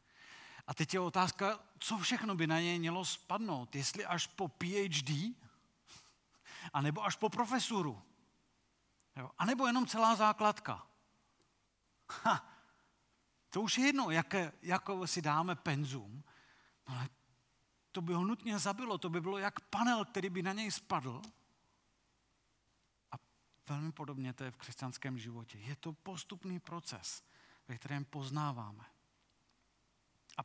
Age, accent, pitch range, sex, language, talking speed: 40-59, native, 135-195 Hz, male, Czech, 130 wpm